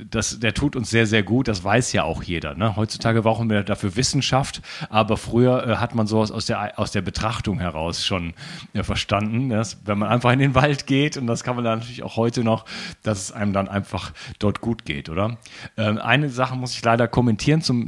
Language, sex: German, male